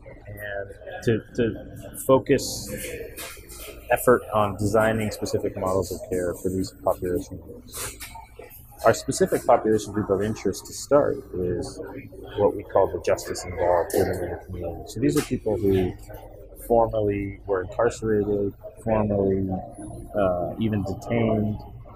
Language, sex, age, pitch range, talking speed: English, male, 30-49, 95-110 Hz, 125 wpm